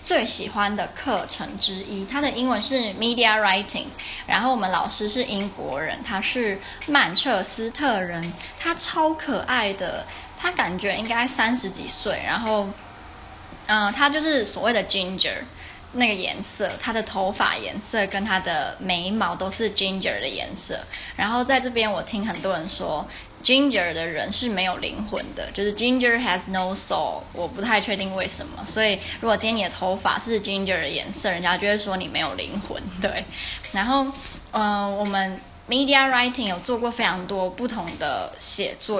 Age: 20-39